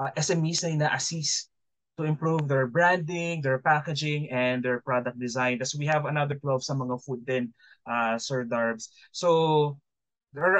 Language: Filipino